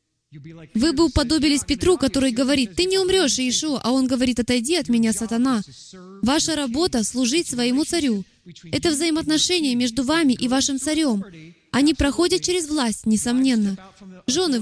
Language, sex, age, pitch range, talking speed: Russian, female, 20-39, 230-310 Hz, 145 wpm